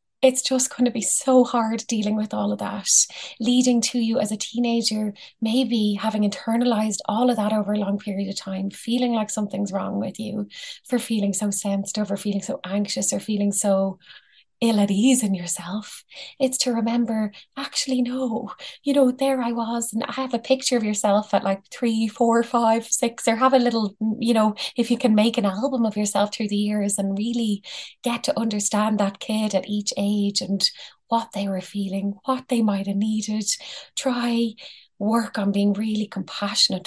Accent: Irish